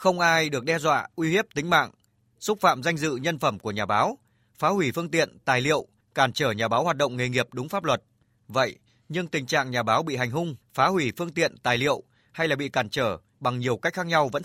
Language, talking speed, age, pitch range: Vietnamese, 255 wpm, 20-39, 120-160 Hz